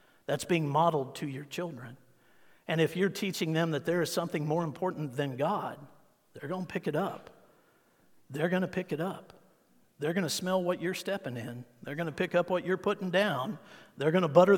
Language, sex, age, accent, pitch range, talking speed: English, male, 50-69, American, 140-185 Hz, 215 wpm